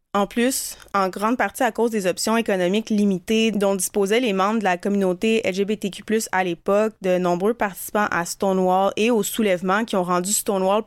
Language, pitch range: French, 185-225 Hz